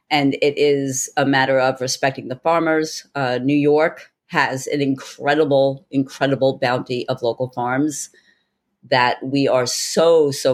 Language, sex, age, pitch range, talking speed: English, female, 40-59, 130-165 Hz, 140 wpm